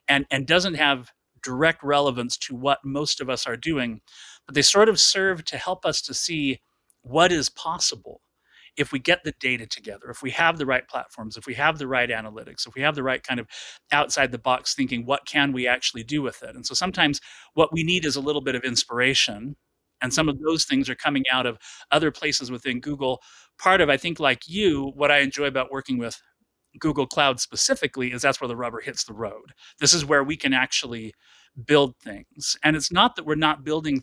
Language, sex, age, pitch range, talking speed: English, male, 30-49, 125-150 Hz, 220 wpm